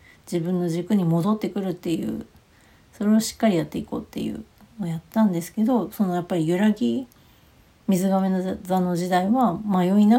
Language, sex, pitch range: Japanese, female, 170-235 Hz